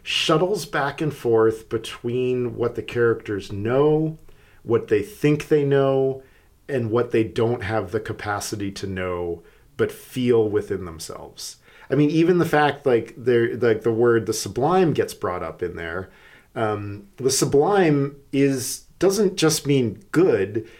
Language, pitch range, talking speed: English, 110-140 Hz, 145 wpm